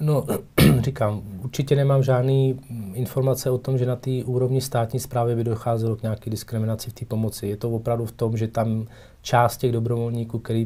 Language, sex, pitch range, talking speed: Czech, male, 105-120 Hz, 185 wpm